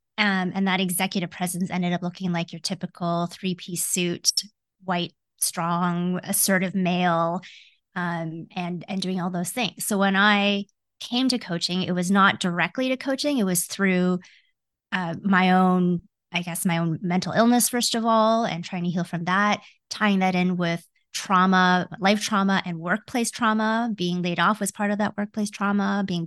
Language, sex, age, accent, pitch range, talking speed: English, female, 20-39, American, 180-215 Hz, 175 wpm